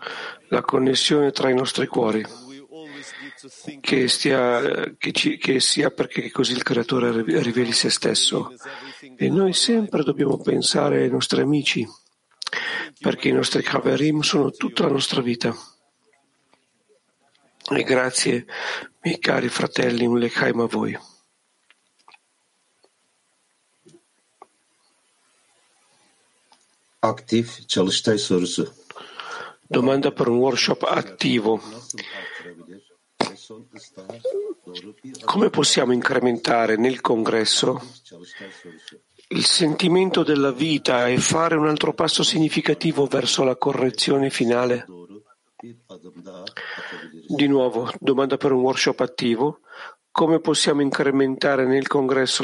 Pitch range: 125-155 Hz